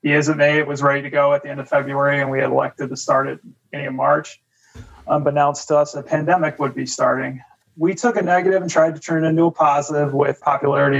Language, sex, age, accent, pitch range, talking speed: English, male, 30-49, American, 140-155 Hz, 255 wpm